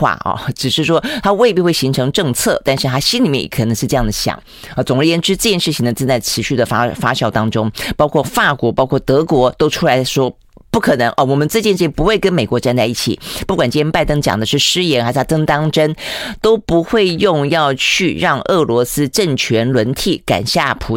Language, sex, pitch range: Chinese, female, 120-150 Hz